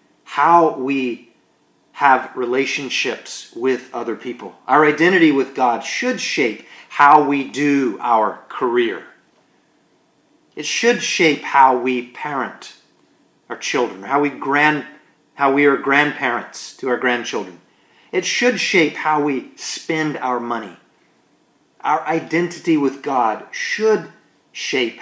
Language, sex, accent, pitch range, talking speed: English, male, American, 125-160 Hz, 120 wpm